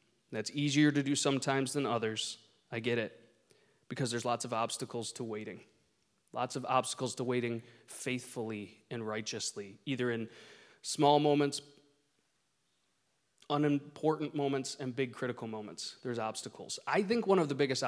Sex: male